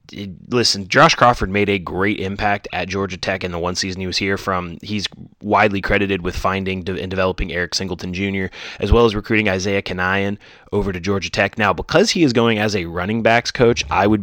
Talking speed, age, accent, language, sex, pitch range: 210 wpm, 30-49, American, English, male, 95-115 Hz